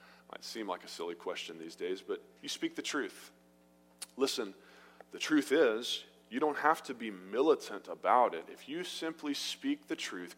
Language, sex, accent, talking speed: English, male, American, 180 wpm